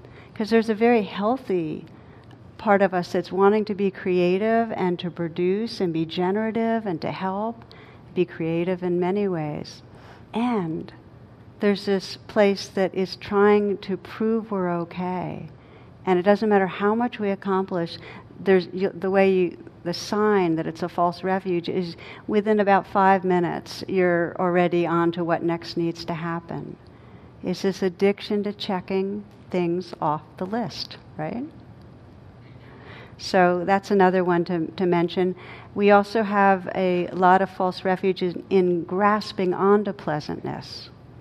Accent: American